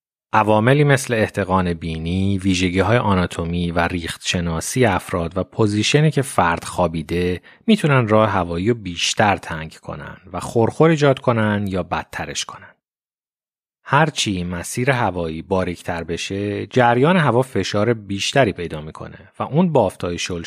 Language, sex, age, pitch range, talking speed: Persian, male, 30-49, 90-120 Hz, 125 wpm